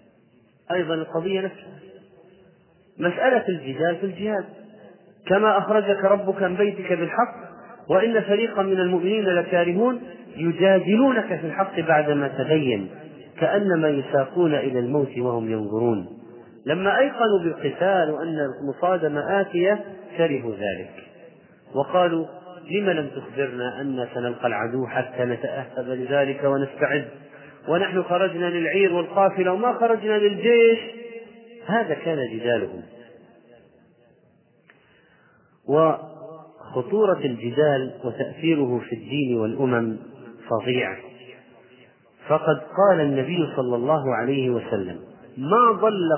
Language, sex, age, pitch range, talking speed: Arabic, male, 40-59, 130-190 Hz, 95 wpm